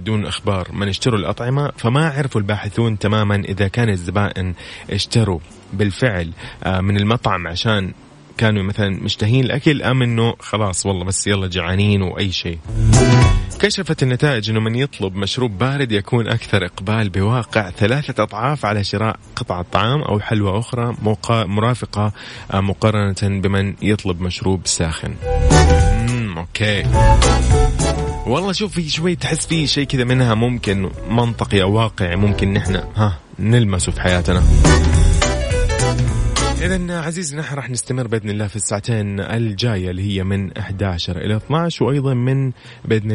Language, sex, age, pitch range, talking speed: Arabic, male, 30-49, 95-120 Hz, 130 wpm